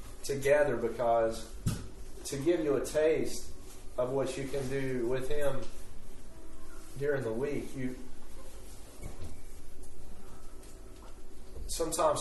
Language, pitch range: English, 115-145 Hz